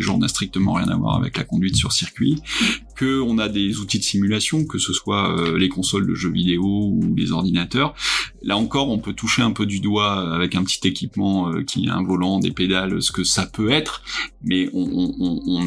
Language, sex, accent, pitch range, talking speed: French, male, French, 90-110 Hz, 210 wpm